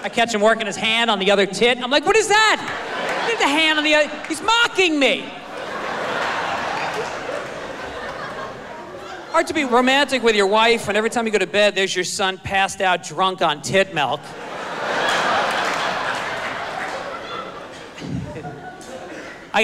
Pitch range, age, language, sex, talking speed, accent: 180-245 Hz, 40-59, English, male, 145 wpm, American